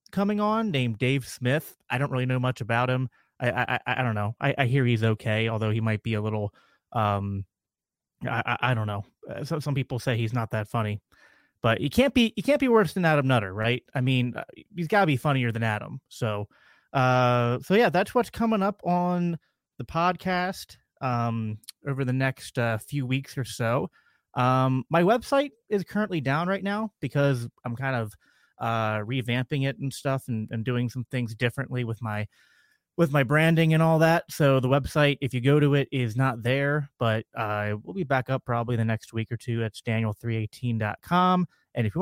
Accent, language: American, English